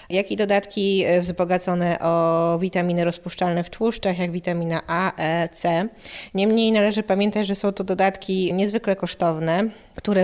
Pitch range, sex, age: 175-200 Hz, female, 20-39